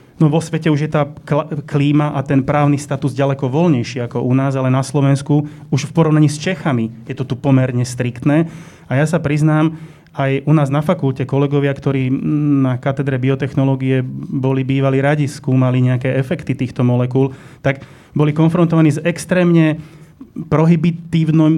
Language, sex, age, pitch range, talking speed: Slovak, male, 30-49, 135-160 Hz, 160 wpm